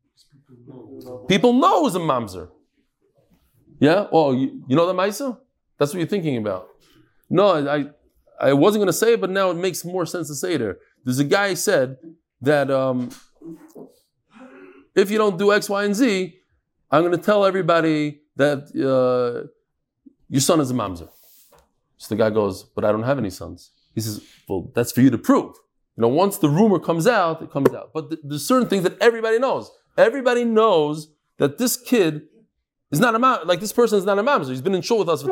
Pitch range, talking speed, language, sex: 150-225 Hz, 205 wpm, English, male